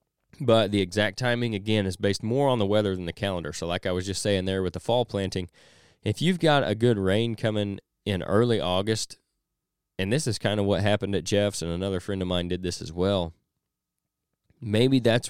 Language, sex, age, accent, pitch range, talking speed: English, male, 20-39, American, 95-115 Hz, 215 wpm